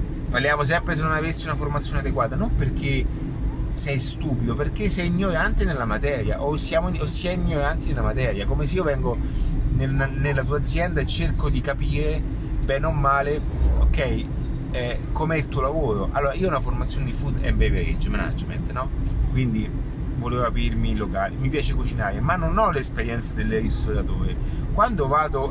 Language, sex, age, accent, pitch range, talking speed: Italian, male, 30-49, native, 120-145 Hz, 170 wpm